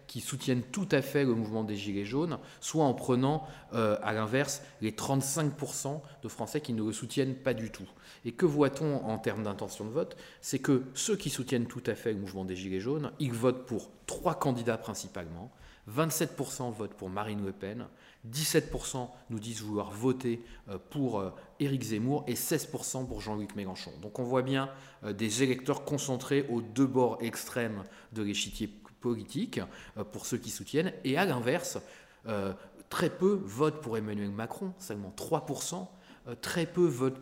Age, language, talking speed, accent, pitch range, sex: 30-49, French, 175 wpm, French, 105-140 Hz, male